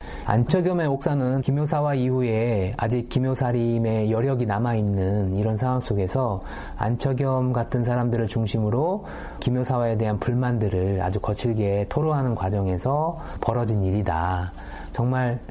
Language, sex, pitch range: Korean, male, 100-130 Hz